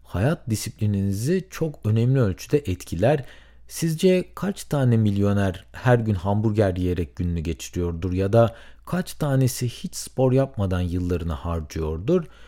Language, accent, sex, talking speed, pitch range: Turkish, native, male, 120 wpm, 100-145 Hz